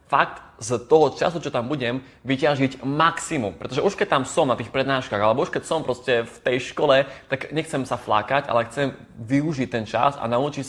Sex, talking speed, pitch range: male, 200 wpm, 120-145 Hz